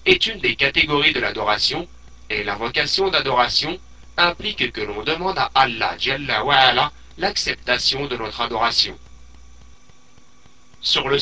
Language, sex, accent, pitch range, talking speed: French, male, French, 115-175 Hz, 130 wpm